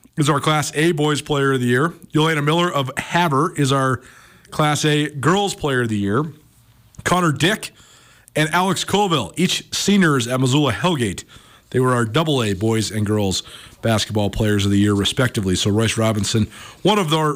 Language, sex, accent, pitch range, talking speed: English, male, American, 125-165 Hz, 175 wpm